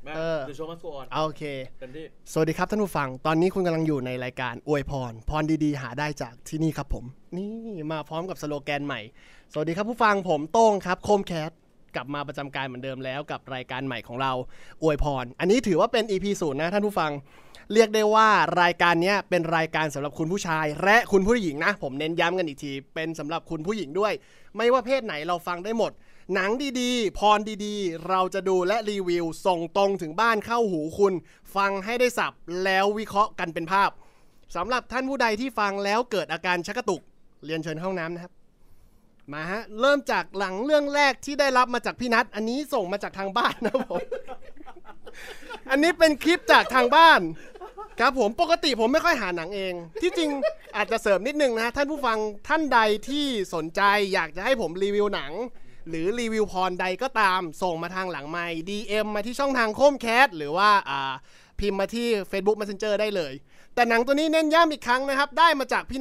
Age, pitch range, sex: 20-39, 160-235 Hz, male